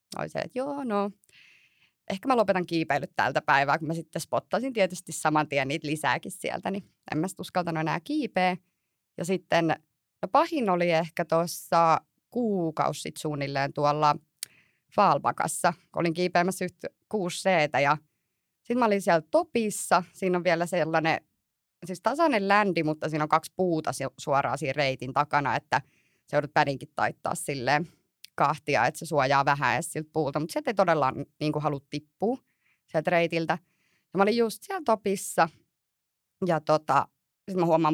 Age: 30-49